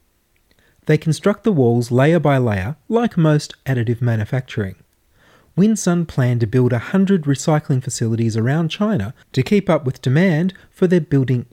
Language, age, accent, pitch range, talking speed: English, 30-49, Australian, 120-175 Hz, 150 wpm